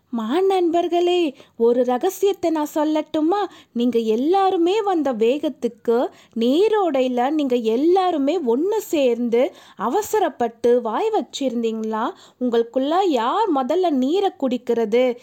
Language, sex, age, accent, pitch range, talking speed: Tamil, female, 20-39, native, 235-335 Hz, 90 wpm